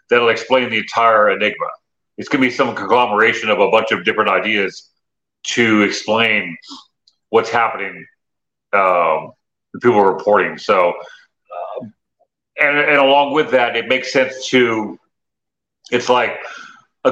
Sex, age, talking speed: male, 40-59, 140 wpm